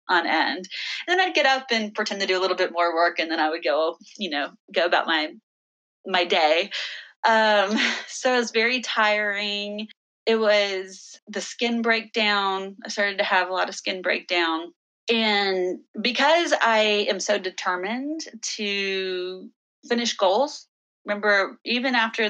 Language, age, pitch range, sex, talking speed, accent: English, 30-49, 185-235 Hz, female, 160 wpm, American